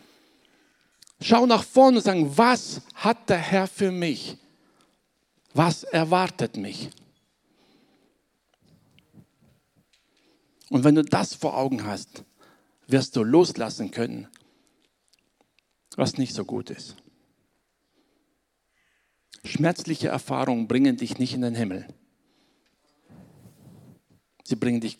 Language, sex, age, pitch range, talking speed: German, male, 60-79, 140-200 Hz, 100 wpm